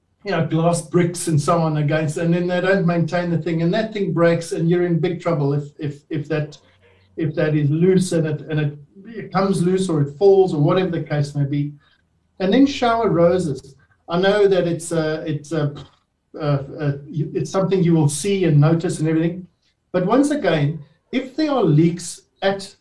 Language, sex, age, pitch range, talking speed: English, male, 50-69, 155-195 Hz, 205 wpm